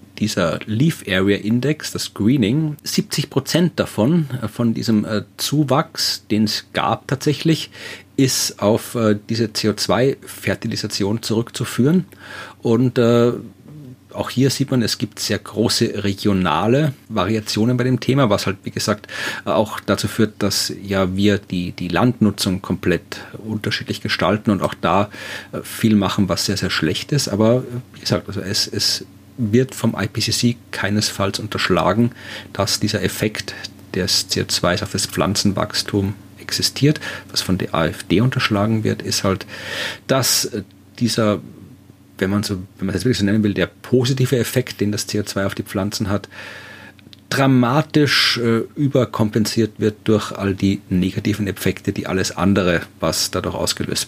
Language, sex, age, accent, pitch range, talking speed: German, male, 40-59, German, 100-120 Hz, 140 wpm